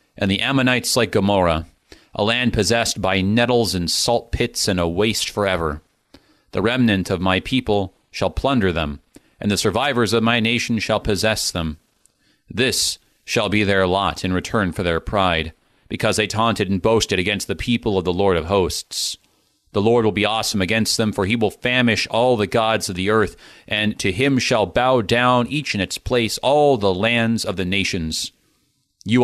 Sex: male